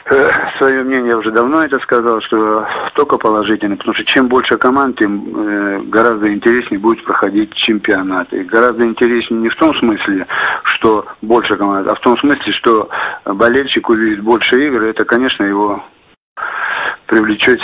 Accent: native